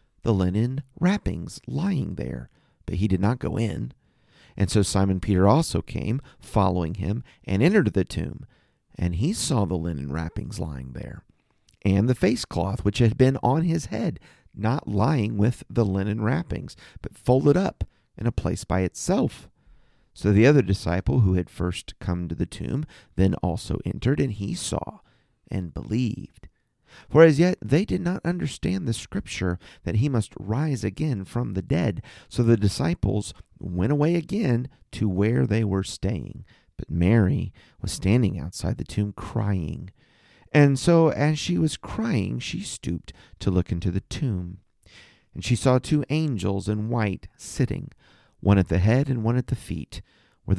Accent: American